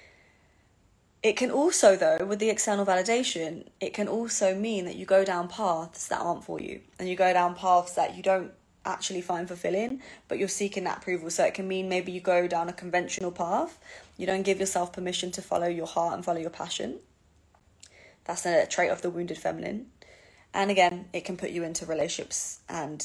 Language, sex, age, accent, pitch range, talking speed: English, female, 20-39, British, 175-205 Hz, 200 wpm